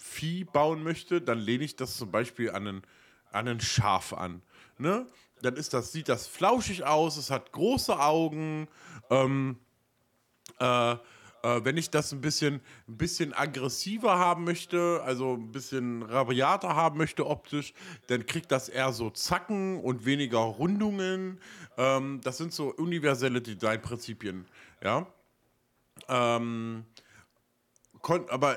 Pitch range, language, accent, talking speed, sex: 115-155 Hz, German, German, 135 wpm, male